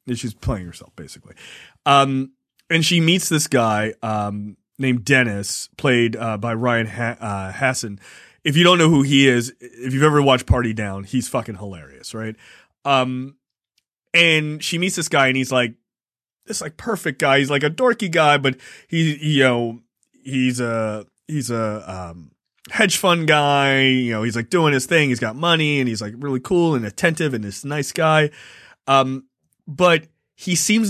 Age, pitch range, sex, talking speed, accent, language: 30-49, 120-155 Hz, male, 180 wpm, American, English